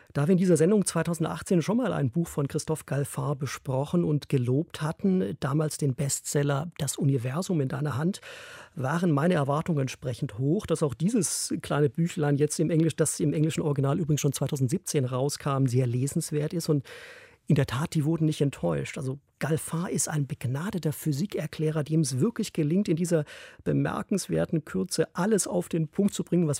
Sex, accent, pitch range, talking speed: male, German, 145-175 Hz, 175 wpm